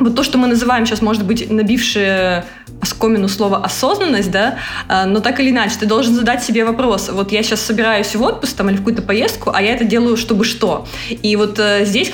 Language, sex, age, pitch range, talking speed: Russian, female, 20-39, 205-235 Hz, 210 wpm